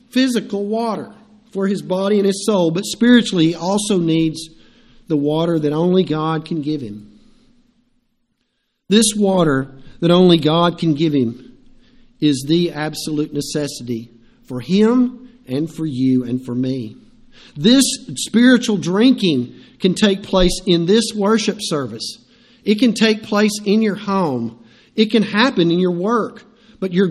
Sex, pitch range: male, 160-230 Hz